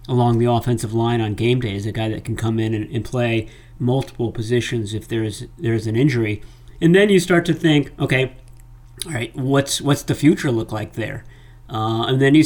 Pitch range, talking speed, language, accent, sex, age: 115-140 Hz, 220 wpm, English, American, male, 50-69